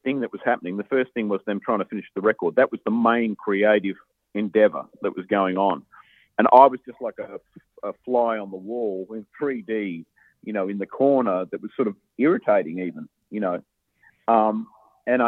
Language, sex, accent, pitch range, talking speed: English, male, Australian, 100-130 Hz, 205 wpm